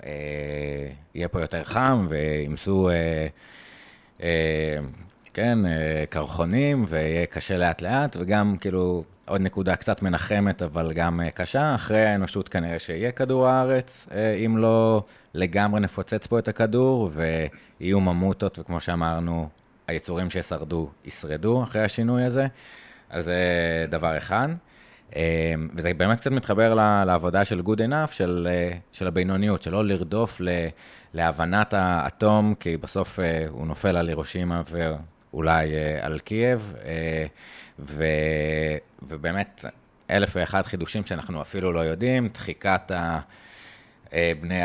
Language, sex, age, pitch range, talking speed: Hebrew, male, 30-49, 80-105 Hz, 130 wpm